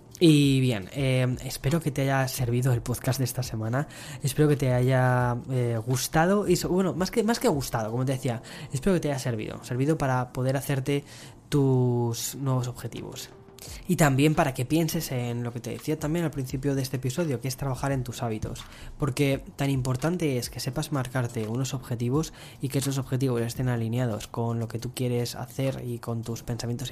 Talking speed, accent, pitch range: 195 wpm, Spanish, 120-140 Hz